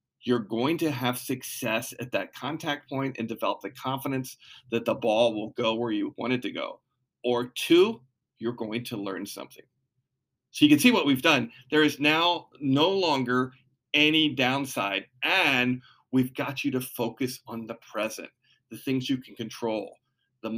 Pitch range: 125-155 Hz